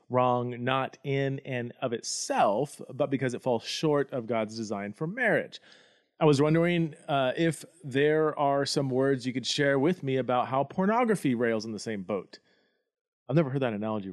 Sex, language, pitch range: male, English, 115-150 Hz